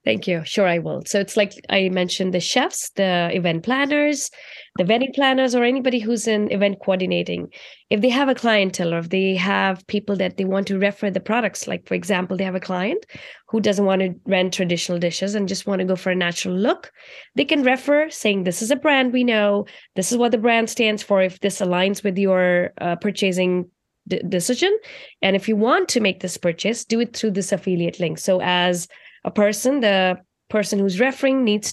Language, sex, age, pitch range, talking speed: English, female, 20-39, 185-245 Hz, 210 wpm